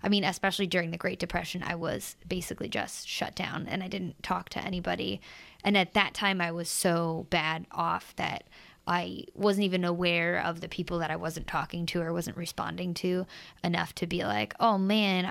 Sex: female